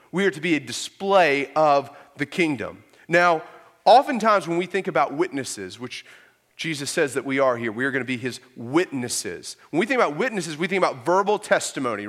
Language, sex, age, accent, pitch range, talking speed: English, male, 30-49, American, 155-220 Hz, 200 wpm